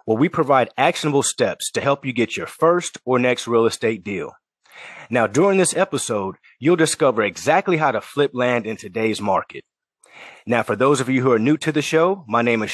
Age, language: 30-49, English